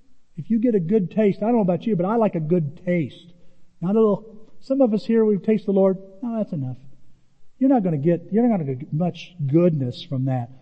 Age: 50-69